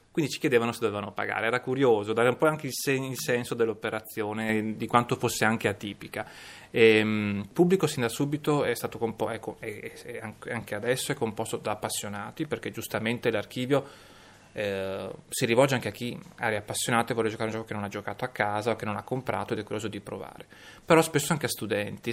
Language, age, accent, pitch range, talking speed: Italian, 20-39, native, 105-125 Hz, 195 wpm